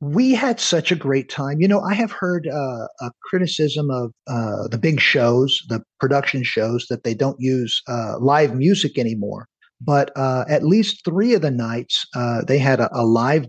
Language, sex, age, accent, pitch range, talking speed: English, male, 50-69, American, 120-145 Hz, 195 wpm